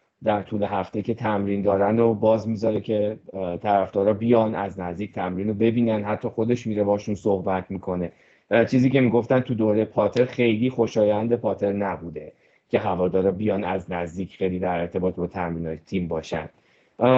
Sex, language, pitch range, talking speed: male, Persian, 105-125 Hz, 165 wpm